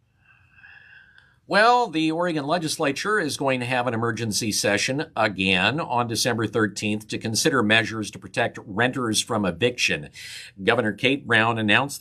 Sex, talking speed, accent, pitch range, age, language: male, 135 wpm, American, 105-145 Hz, 50-69, English